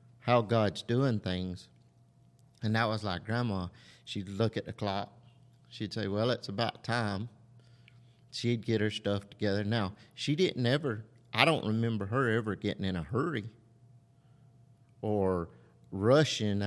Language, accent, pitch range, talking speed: English, American, 105-125 Hz, 145 wpm